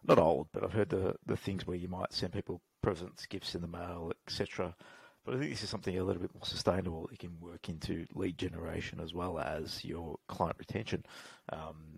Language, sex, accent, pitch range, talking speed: English, male, Australian, 85-105 Hz, 215 wpm